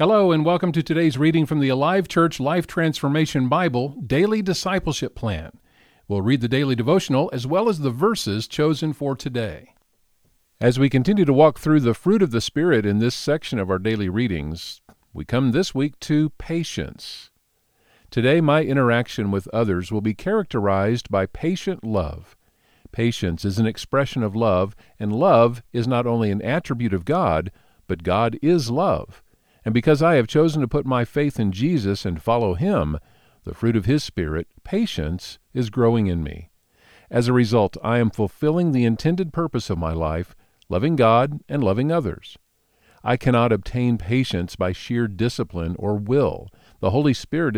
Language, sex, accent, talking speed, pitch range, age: English, male, American, 170 wpm, 105-150 Hz, 50-69